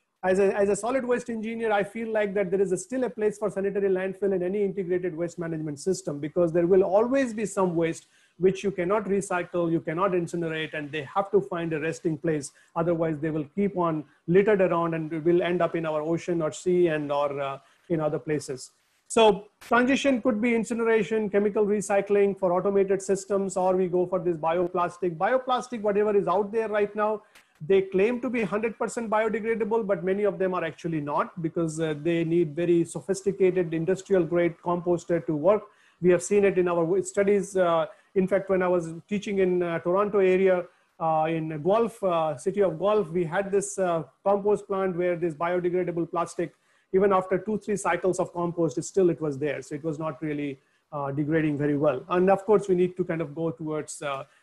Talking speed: 205 wpm